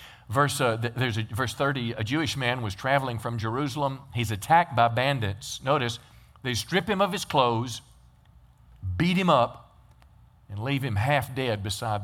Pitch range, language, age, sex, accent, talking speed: 110-140 Hz, English, 50-69, male, American, 165 wpm